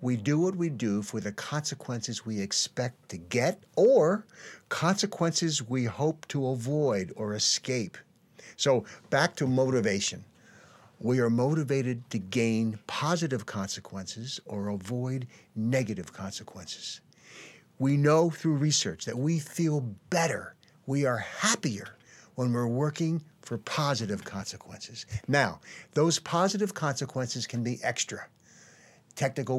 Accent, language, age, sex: American, English, 60-79, male